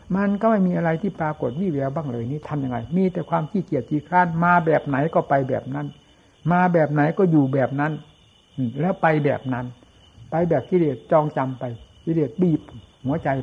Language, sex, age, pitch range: Thai, male, 60-79, 135-170 Hz